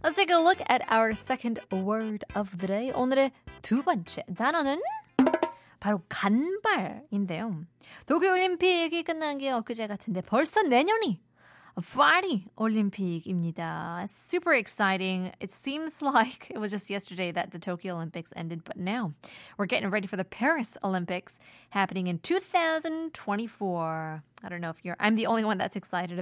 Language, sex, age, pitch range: Korean, female, 20-39, 190-305 Hz